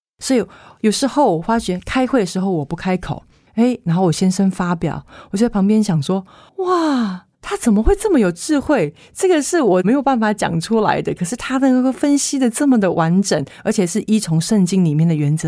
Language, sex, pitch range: Chinese, female, 160-215 Hz